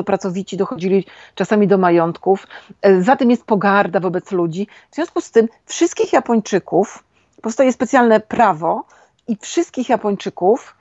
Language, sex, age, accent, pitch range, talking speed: Polish, female, 40-59, native, 190-240 Hz, 130 wpm